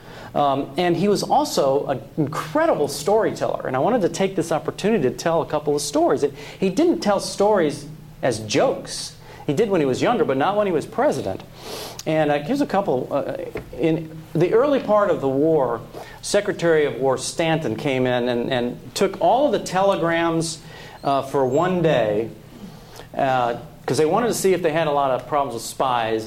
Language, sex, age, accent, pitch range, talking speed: English, male, 40-59, American, 130-165 Hz, 195 wpm